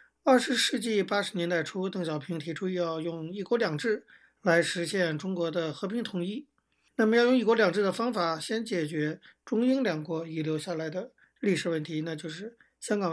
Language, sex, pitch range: Chinese, male, 170-215 Hz